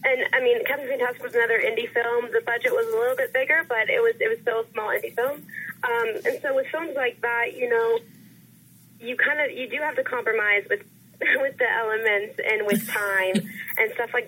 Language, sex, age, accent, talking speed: English, female, 20-39, American, 225 wpm